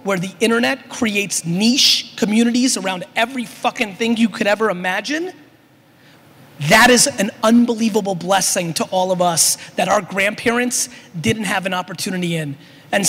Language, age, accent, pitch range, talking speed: English, 30-49, American, 185-235 Hz, 145 wpm